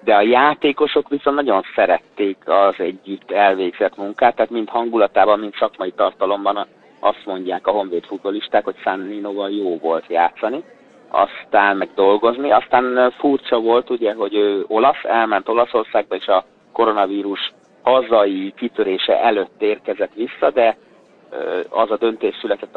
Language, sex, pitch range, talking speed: Hungarian, male, 100-155 Hz, 135 wpm